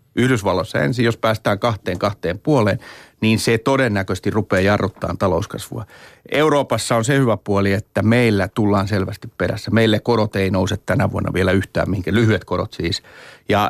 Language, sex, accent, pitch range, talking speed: Finnish, male, native, 95-120 Hz, 160 wpm